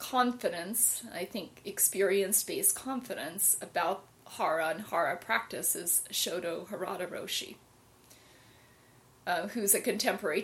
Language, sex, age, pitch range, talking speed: English, female, 30-49, 125-200 Hz, 110 wpm